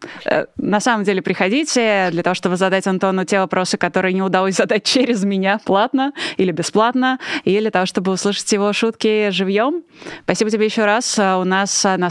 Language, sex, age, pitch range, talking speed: Russian, female, 20-39, 180-215 Hz, 175 wpm